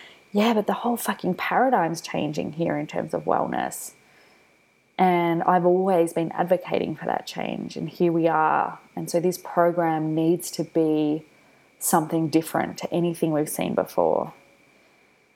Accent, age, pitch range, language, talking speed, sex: Australian, 20-39, 160-180 Hz, English, 150 wpm, female